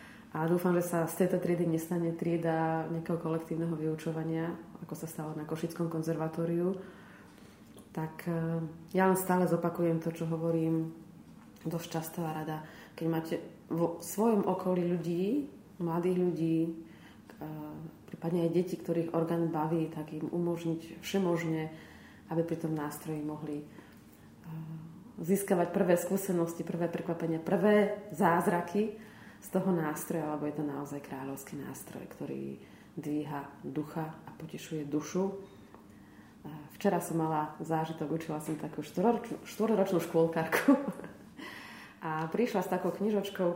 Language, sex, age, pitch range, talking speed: Slovak, female, 30-49, 160-180 Hz, 120 wpm